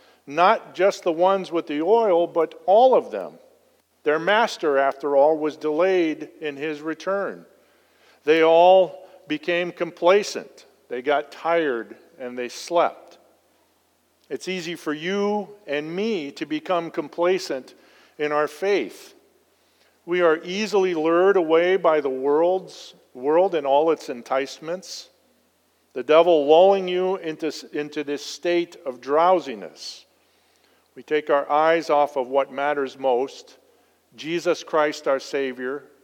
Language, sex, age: English, male, 50-69